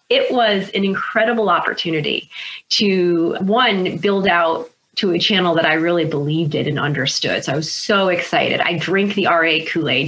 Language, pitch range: English, 170-215 Hz